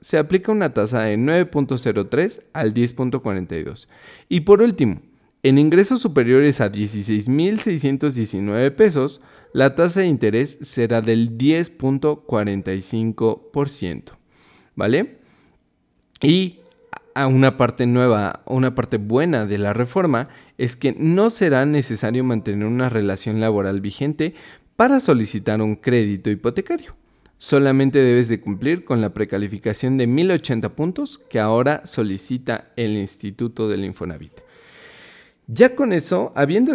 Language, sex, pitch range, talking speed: Spanish, male, 110-145 Hz, 115 wpm